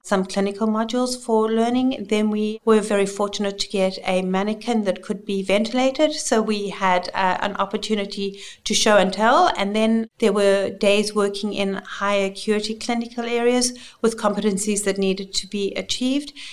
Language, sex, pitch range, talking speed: English, female, 200-230 Hz, 165 wpm